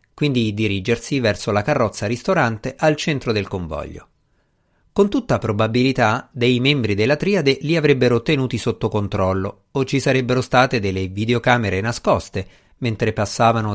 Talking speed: 135 wpm